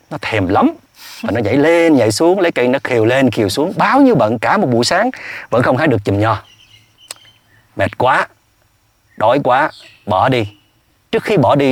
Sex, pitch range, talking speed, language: male, 105-165 Hz, 200 wpm, Vietnamese